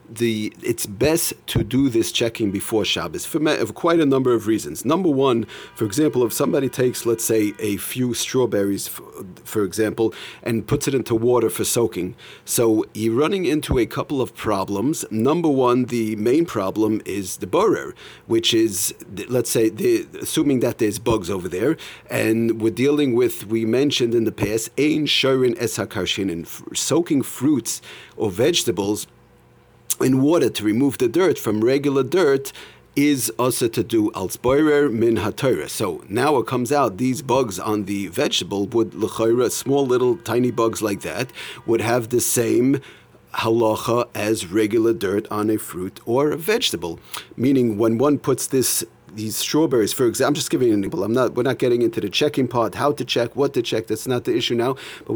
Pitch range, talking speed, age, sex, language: 110-140 Hz, 175 wpm, 40-59, male, English